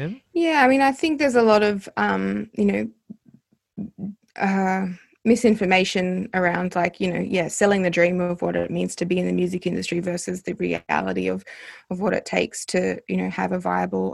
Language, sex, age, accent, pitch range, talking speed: English, female, 20-39, Australian, 175-205 Hz, 195 wpm